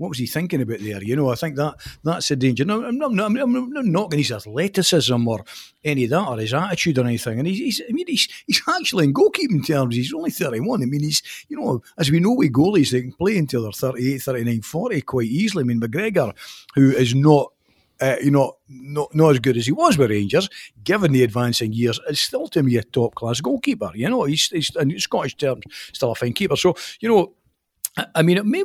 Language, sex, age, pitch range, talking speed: English, male, 60-79, 115-165 Hz, 245 wpm